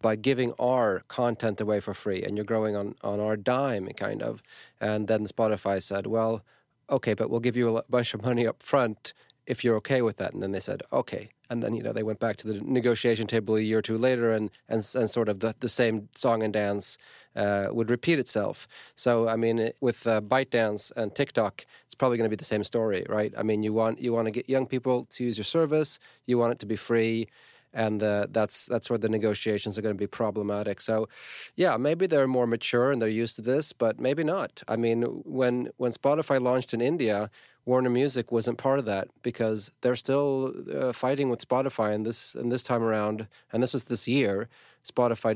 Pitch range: 105-125 Hz